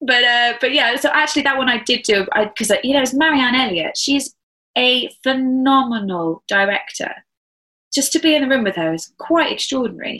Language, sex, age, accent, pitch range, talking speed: English, female, 20-39, British, 190-260 Hz, 200 wpm